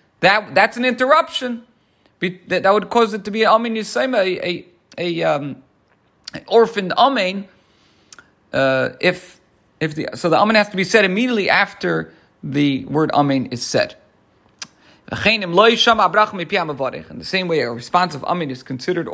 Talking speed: 145 wpm